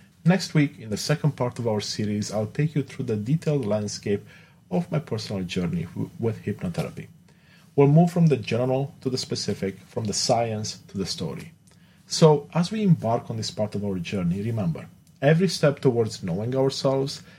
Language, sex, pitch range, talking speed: English, male, 110-160 Hz, 180 wpm